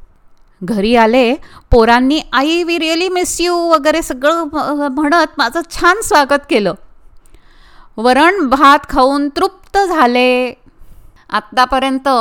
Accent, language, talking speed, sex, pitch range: native, Marathi, 85 wpm, female, 235-320 Hz